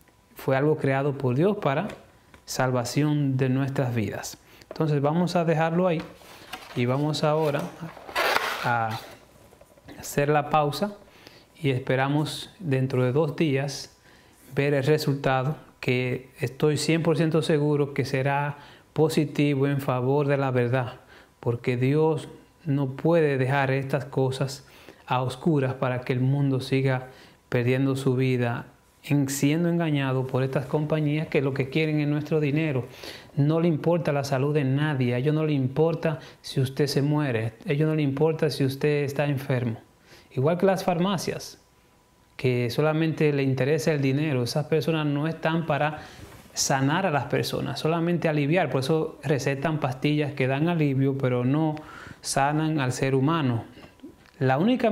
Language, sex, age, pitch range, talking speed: English, male, 30-49, 130-155 Hz, 145 wpm